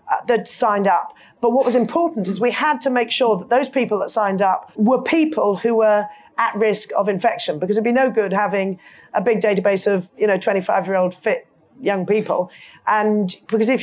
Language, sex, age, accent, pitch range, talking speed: English, female, 40-59, British, 195-240 Hz, 215 wpm